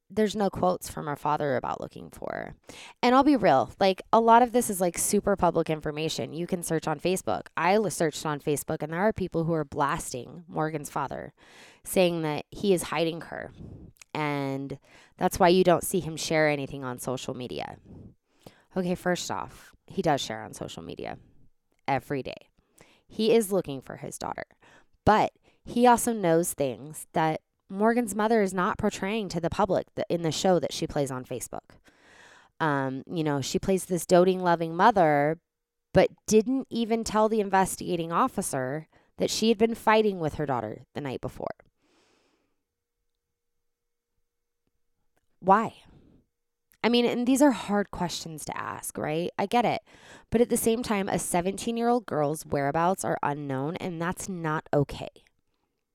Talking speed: 165 wpm